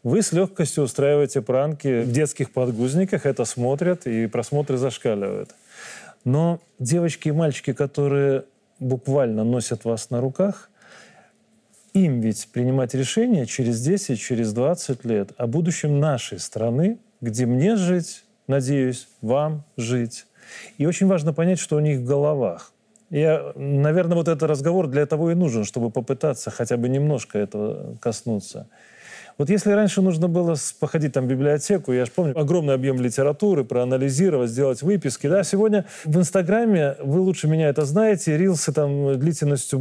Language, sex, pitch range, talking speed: Russian, male, 130-175 Hz, 145 wpm